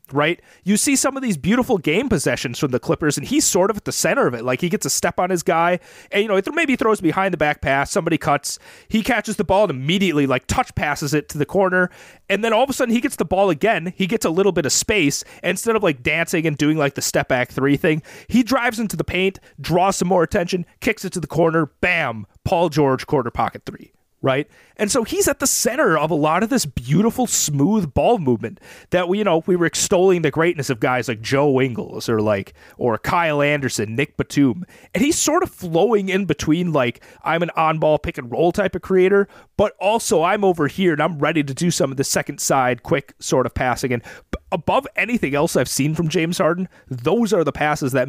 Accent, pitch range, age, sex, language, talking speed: American, 145-200 Hz, 30-49, male, English, 240 wpm